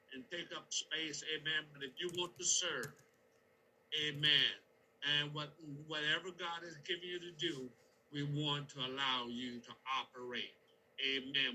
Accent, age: American, 60-79